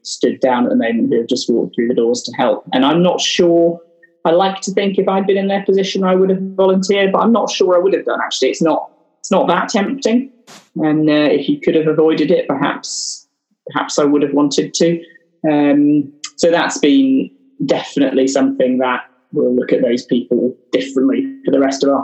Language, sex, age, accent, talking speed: English, male, 20-39, British, 220 wpm